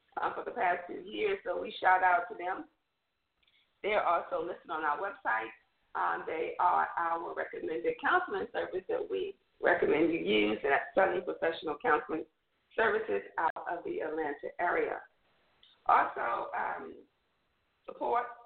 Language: English